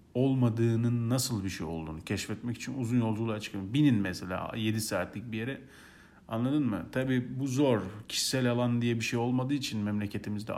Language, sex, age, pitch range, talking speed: Turkish, male, 40-59, 105-125 Hz, 165 wpm